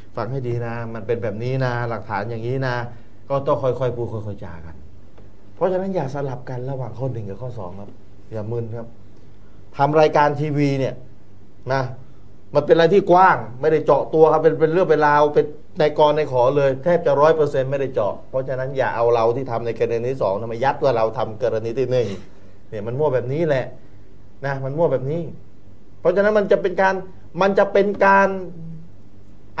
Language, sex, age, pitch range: Thai, male, 30-49, 115-185 Hz